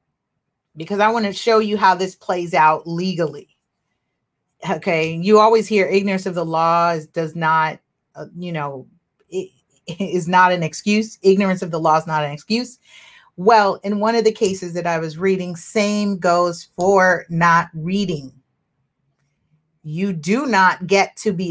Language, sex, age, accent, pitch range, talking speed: English, female, 40-59, American, 165-210 Hz, 165 wpm